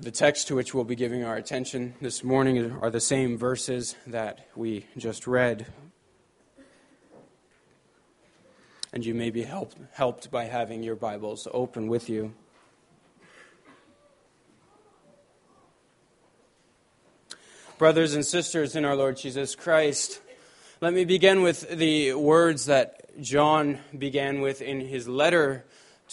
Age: 20-39